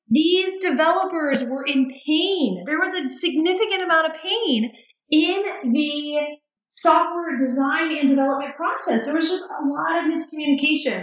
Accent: American